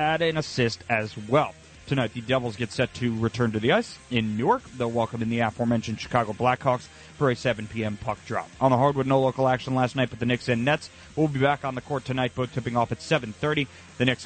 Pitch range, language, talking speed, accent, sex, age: 115-145 Hz, English, 235 wpm, American, male, 30-49